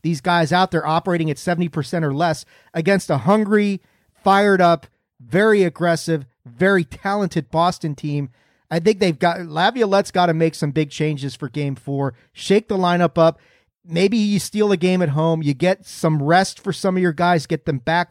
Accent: American